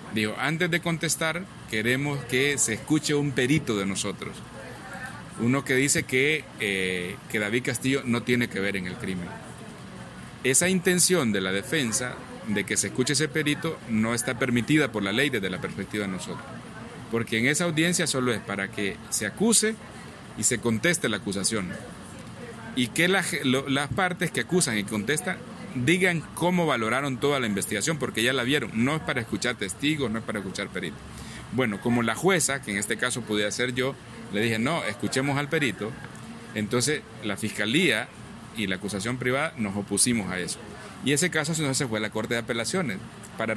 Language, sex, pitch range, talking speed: Spanish, male, 105-145 Hz, 185 wpm